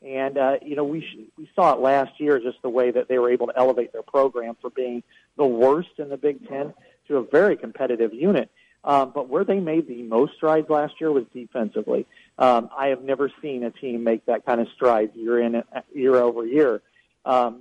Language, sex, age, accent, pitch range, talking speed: English, male, 40-59, American, 120-150 Hz, 220 wpm